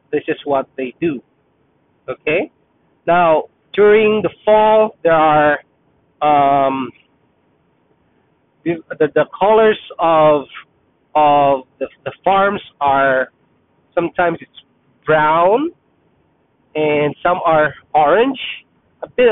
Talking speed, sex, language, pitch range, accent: 100 wpm, male, English, 140-185 Hz, Filipino